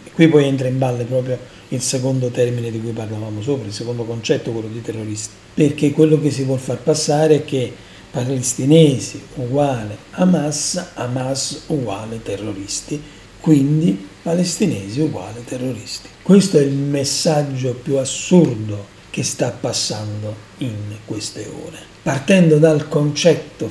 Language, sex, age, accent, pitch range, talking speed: Italian, male, 40-59, native, 115-160 Hz, 135 wpm